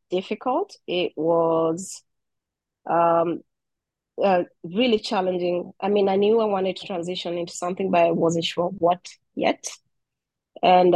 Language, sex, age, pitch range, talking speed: English, female, 30-49, 165-185 Hz, 130 wpm